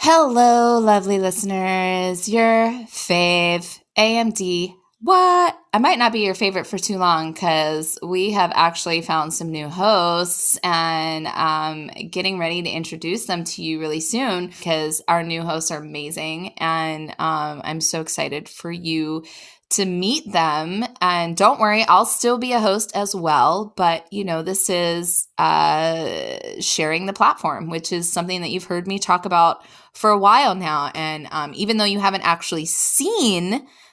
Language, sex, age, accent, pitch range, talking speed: English, female, 20-39, American, 165-210 Hz, 160 wpm